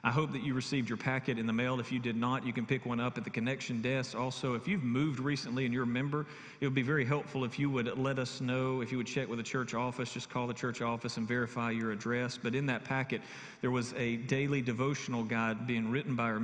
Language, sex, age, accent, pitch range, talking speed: English, male, 40-59, American, 120-135 Hz, 270 wpm